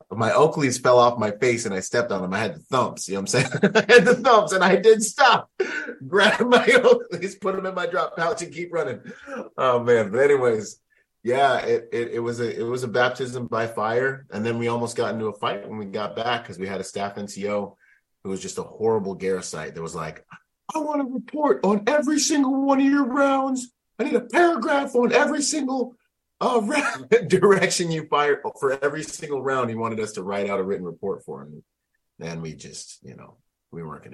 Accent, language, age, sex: American, English, 30-49, male